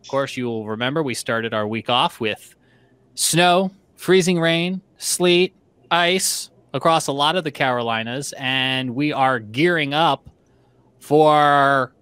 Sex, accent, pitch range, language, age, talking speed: male, American, 120-165 Hz, English, 30-49, 140 wpm